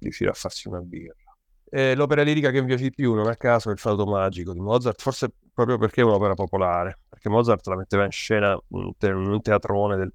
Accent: native